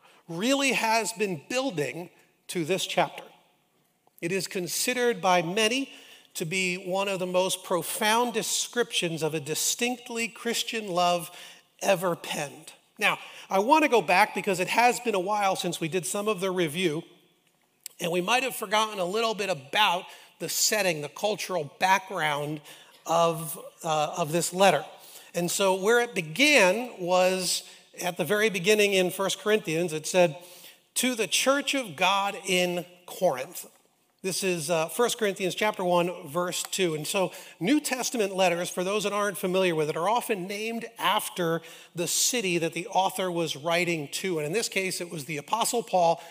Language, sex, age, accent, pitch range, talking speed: English, male, 40-59, American, 175-215 Hz, 165 wpm